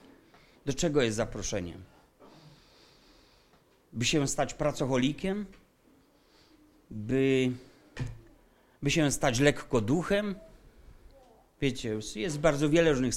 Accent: native